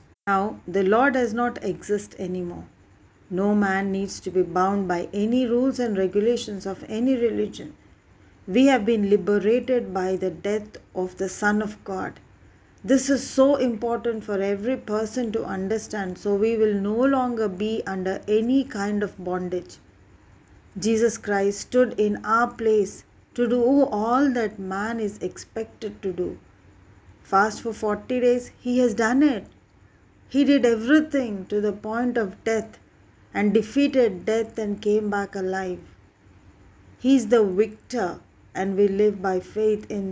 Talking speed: 150 wpm